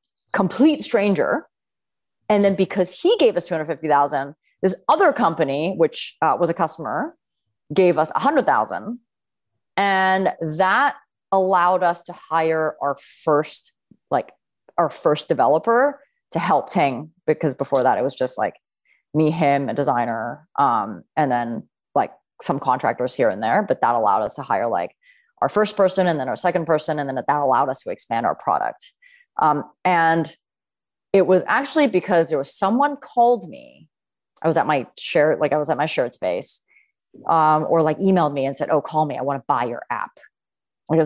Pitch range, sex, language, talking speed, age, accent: 150-225 Hz, female, English, 175 wpm, 30-49, American